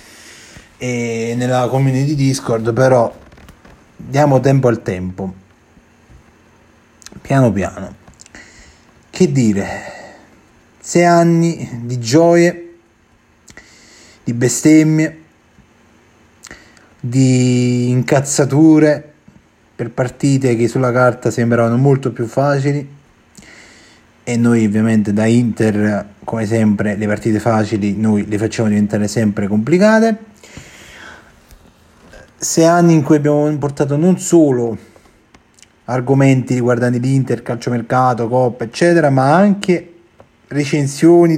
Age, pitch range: 30-49, 115-145 Hz